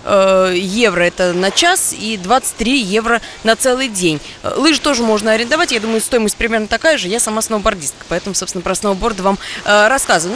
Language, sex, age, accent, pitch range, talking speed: Russian, female, 20-39, native, 200-255 Hz, 170 wpm